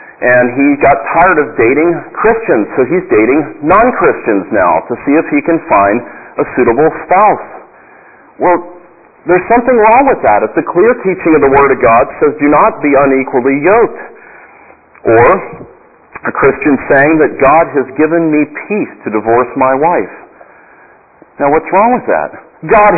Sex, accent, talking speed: male, American, 160 wpm